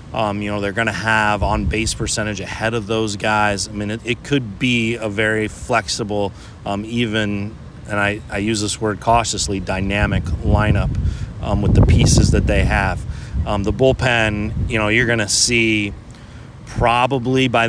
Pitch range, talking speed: 100-115 Hz, 175 wpm